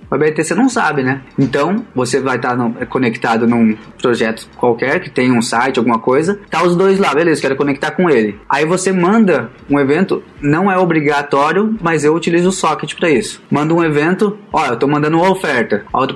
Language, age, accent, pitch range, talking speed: Portuguese, 20-39, Brazilian, 135-185 Hz, 215 wpm